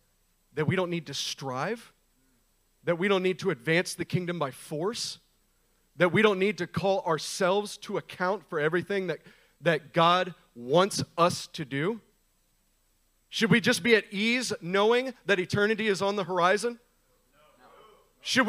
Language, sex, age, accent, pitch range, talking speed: English, male, 40-59, American, 160-210 Hz, 155 wpm